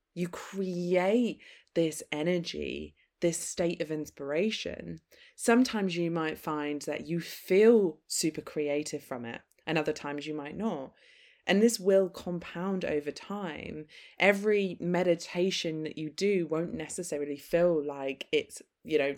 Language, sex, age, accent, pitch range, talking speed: English, female, 20-39, British, 155-190 Hz, 135 wpm